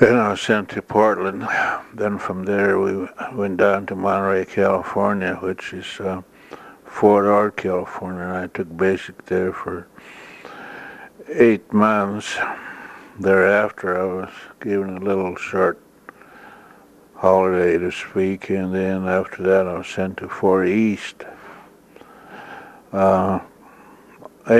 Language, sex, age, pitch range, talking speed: English, male, 60-79, 95-100 Hz, 120 wpm